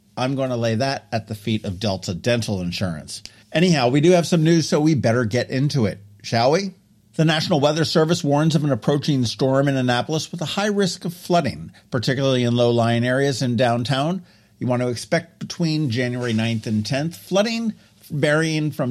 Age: 50-69